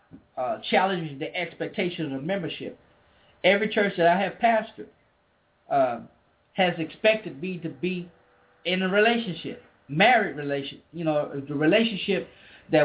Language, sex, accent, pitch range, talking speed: English, male, American, 155-225 Hz, 130 wpm